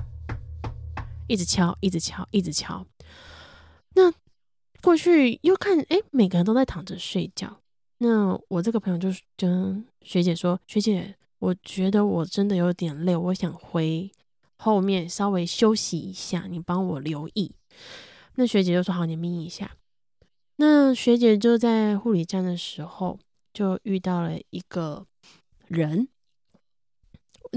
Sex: female